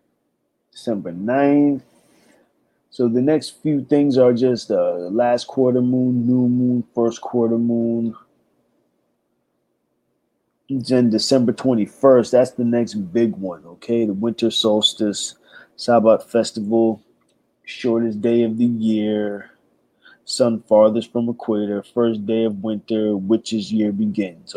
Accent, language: American, English